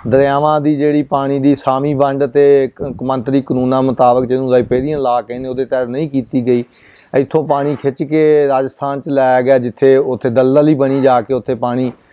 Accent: Indian